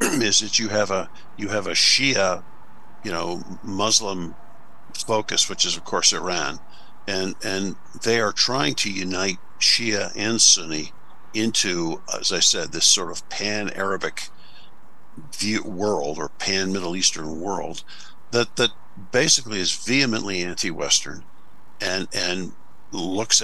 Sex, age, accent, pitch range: male, 50-69, American, 85-105 Hz